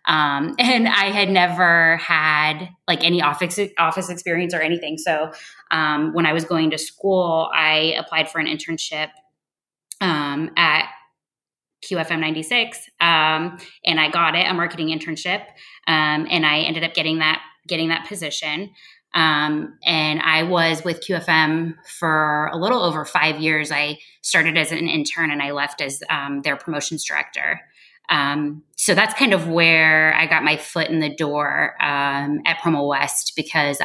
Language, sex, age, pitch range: English, female, 20-39, 150-175 Hz